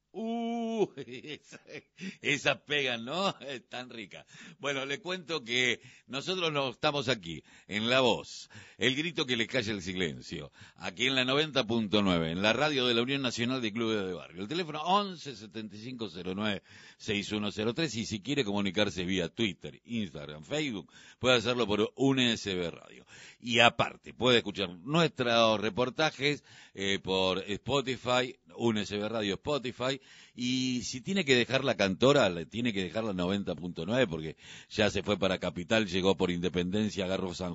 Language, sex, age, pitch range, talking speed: Spanish, male, 60-79, 100-135 Hz, 145 wpm